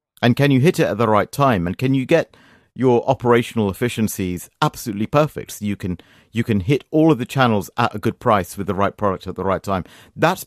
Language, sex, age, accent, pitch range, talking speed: English, male, 50-69, British, 105-150 Hz, 235 wpm